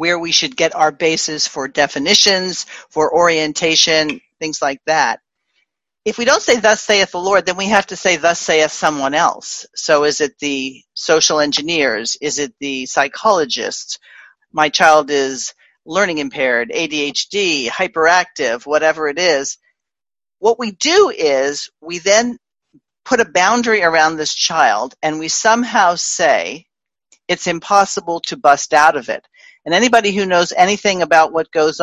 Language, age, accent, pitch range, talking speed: English, 40-59, American, 155-215 Hz, 155 wpm